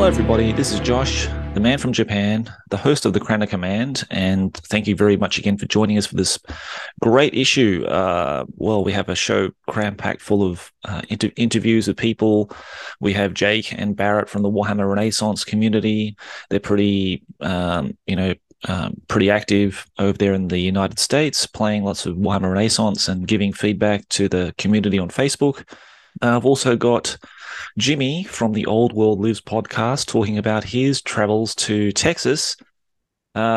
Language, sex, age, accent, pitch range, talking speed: English, male, 30-49, Australian, 100-110 Hz, 175 wpm